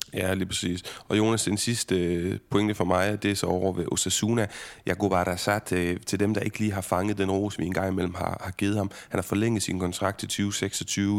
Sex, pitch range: male, 95-115 Hz